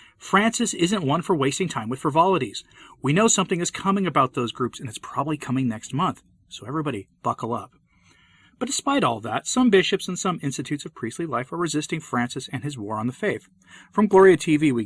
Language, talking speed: English, 205 wpm